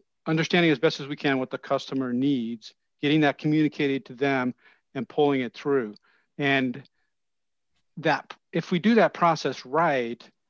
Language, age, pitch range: English, 50-69, 120-155 Hz